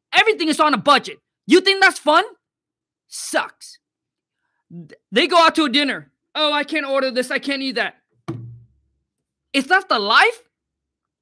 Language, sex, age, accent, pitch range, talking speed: English, male, 20-39, American, 255-335 Hz, 155 wpm